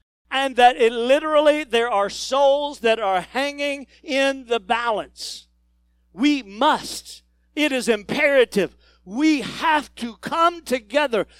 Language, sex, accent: English, male, American